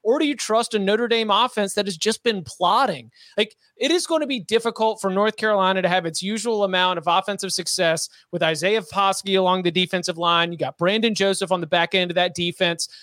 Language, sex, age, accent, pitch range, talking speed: English, male, 30-49, American, 175-215 Hz, 225 wpm